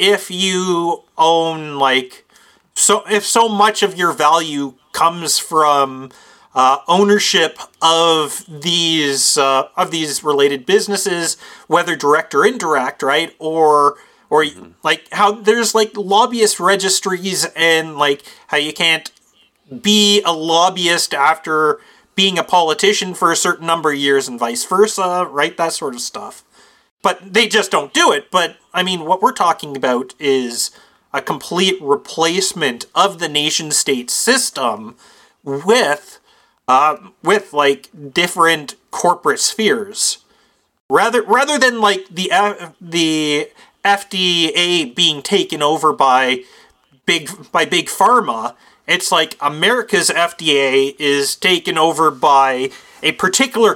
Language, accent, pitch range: English, American, 150-200 Hz